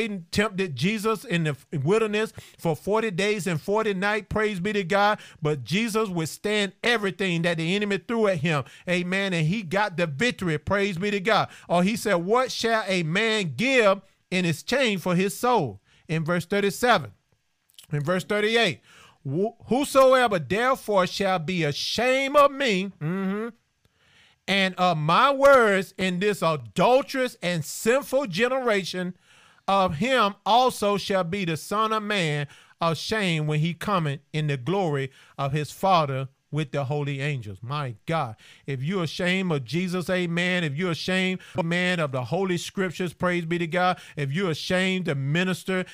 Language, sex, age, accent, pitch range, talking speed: English, male, 40-59, American, 165-205 Hz, 160 wpm